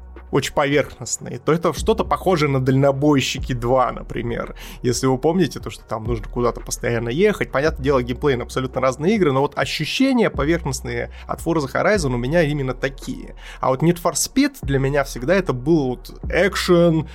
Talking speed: 170 wpm